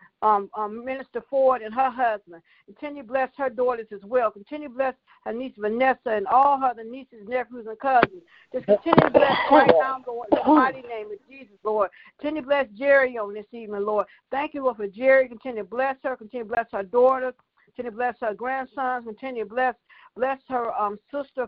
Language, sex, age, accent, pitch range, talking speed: English, female, 60-79, American, 215-265 Hz, 195 wpm